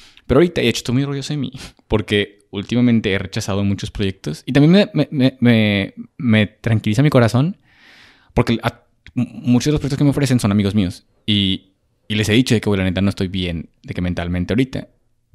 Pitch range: 100-125 Hz